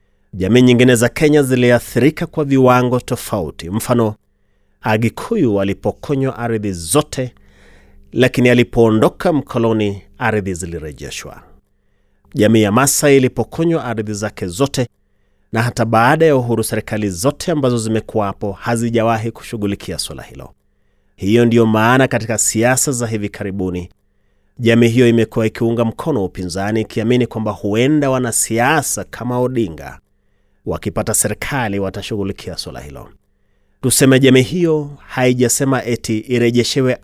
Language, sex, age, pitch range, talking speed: Swahili, male, 30-49, 100-125 Hz, 115 wpm